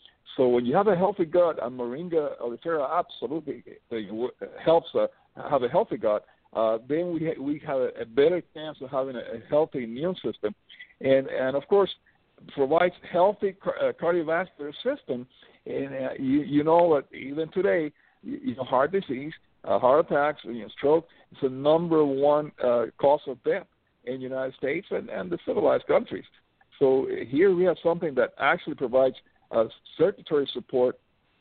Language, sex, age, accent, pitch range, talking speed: English, male, 60-79, American, 130-185 Hz, 170 wpm